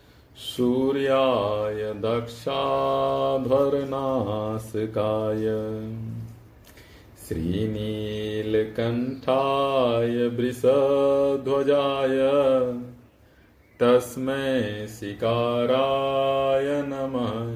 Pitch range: 110-135 Hz